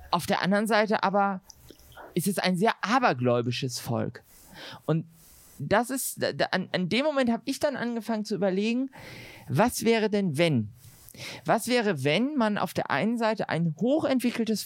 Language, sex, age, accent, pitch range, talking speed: German, male, 40-59, German, 155-220 Hz, 150 wpm